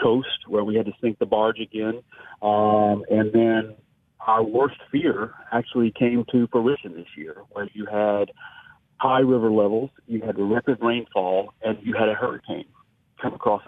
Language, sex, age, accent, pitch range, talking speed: English, male, 40-59, American, 105-120 Hz, 165 wpm